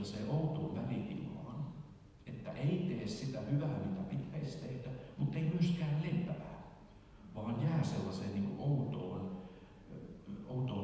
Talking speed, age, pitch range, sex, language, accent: 120 wpm, 60-79, 100-145 Hz, male, Finnish, native